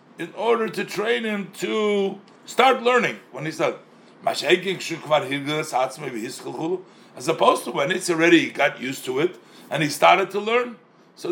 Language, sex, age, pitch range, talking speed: English, male, 60-79, 165-245 Hz, 150 wpm